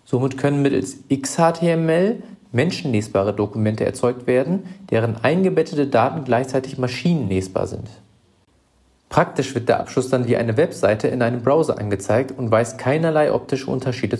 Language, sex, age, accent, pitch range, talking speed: English, male, 40-59, German, 110-145 Hz, 130 wpm